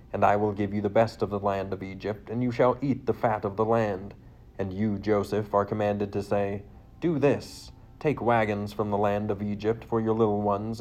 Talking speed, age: 230 wpm, 40-59